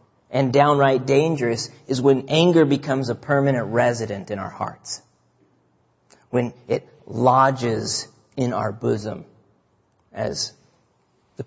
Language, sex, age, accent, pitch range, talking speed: English, male, 40-59, American, 120-150 Hz, 110 wpm